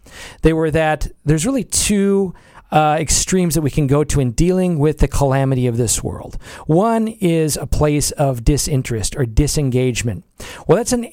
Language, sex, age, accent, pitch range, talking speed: English, male, 40-59, American, 135-175 Hz, 175 wpm